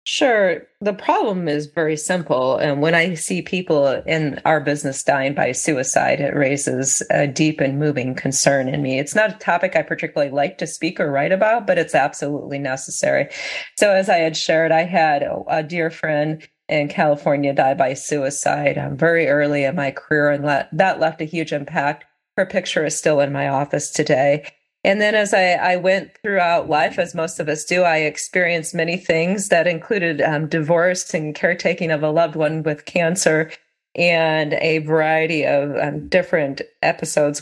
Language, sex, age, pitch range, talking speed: English, female, 40-59, 145-180 Hz, 180 wpm